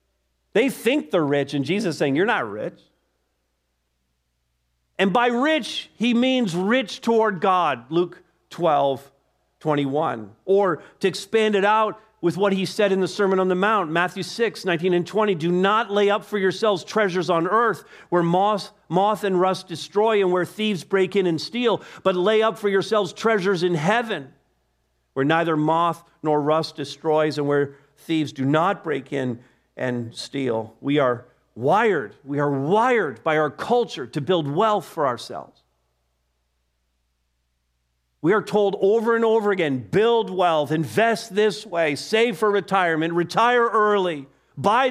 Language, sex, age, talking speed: English, male, 50-69, 160 wpm